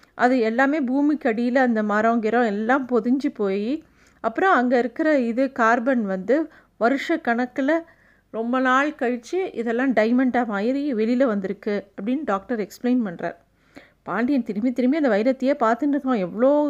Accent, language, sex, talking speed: native, Tamil, female, 130 wpm